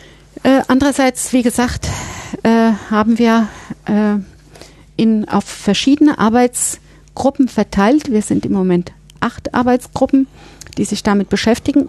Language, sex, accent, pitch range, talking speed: German, female, German, 195-235 Hz, 110 wpm